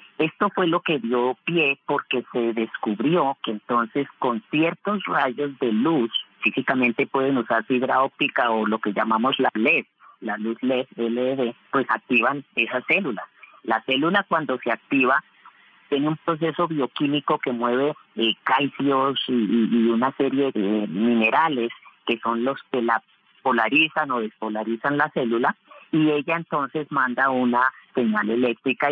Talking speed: 150 wpm